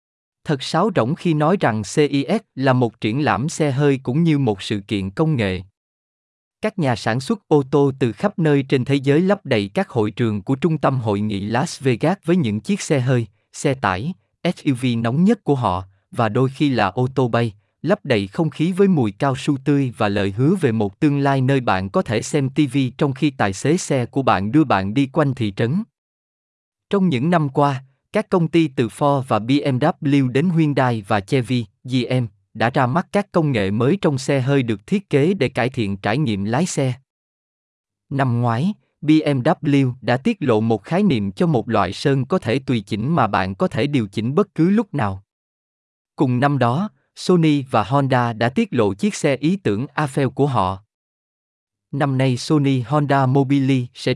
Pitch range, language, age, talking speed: 115-155 Hz, Vietnamese, 20-39, 205 wpm